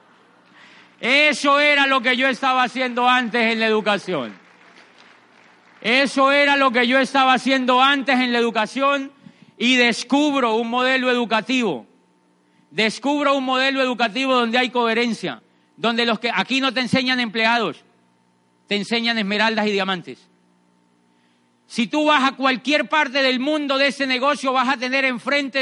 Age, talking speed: 40-59, 145 wpm